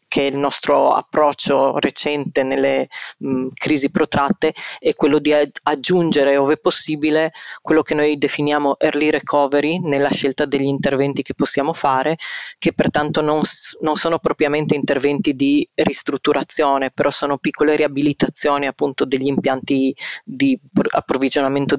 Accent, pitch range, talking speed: native, 135-150 Hz, 135 wpm